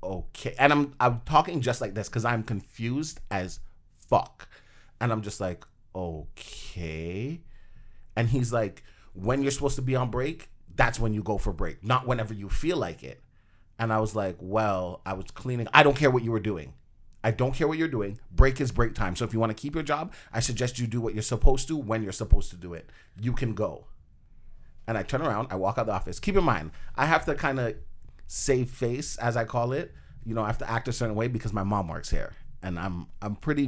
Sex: male